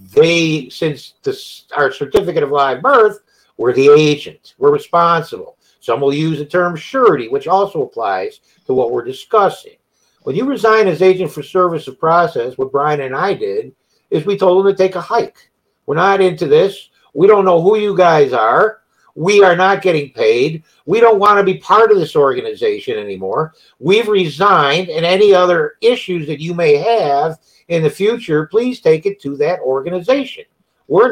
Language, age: English, 50-69